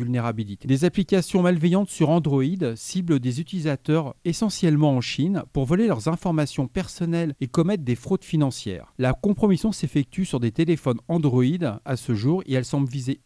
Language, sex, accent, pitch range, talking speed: French, male, French, 130-175 Hz, 160 wpm